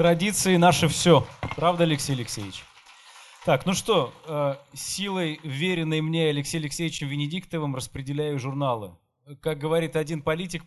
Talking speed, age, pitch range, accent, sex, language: 120 wpm, 20-39, 140-175 Hz, native, male, Russian